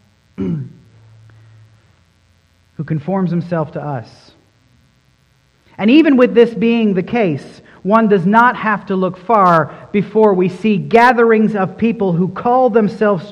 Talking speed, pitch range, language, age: 125 wpm, 130-180 Hz, English, 40-59